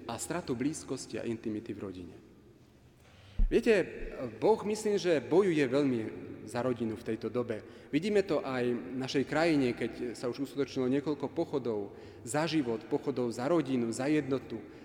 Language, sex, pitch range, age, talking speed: Slovak, male, 120-160 Hz, 40-59, 150 wpm